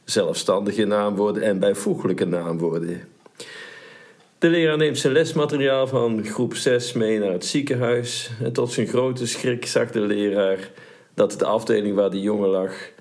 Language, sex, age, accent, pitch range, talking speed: Dutch, male, 50-69, Dutch, 100-125 Hz, 150 wpm